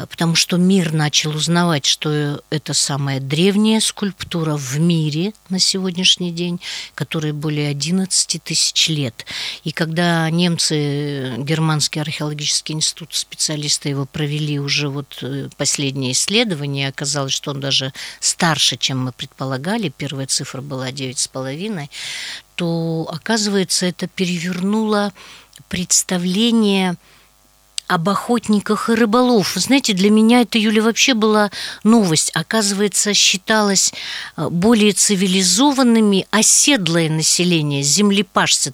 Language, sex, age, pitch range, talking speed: Russian, female, 50-69, 150-200 Hz, 105 wpm